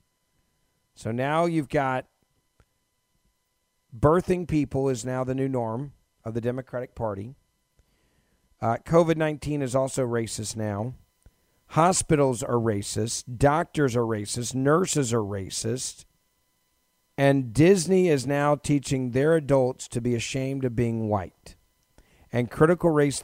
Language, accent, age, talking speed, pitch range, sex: English, American, 40-59, 120 wpm, 115-140 Hz, male